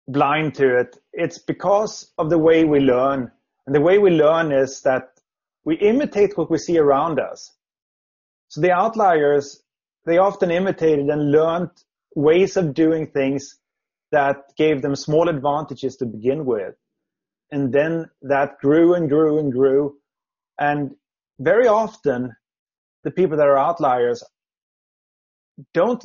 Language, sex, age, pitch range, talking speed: English, male, 30-49, 135-165 Hz, 140 wpm